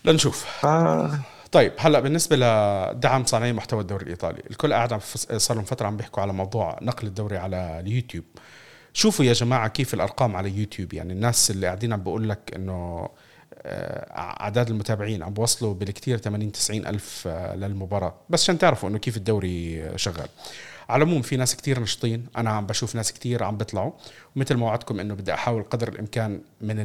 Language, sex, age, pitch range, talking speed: Arabic, male, 40-59, 100-125 Hz, 170 wpm